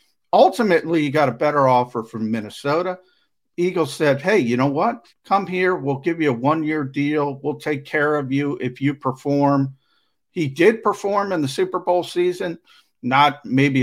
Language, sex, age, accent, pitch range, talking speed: English, male, 50-69, American, 125-165 Hz, 175 wpm